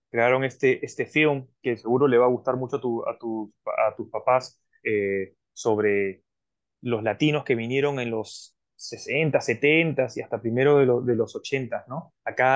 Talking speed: 175 wpm